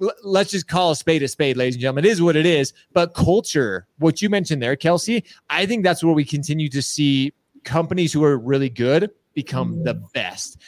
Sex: male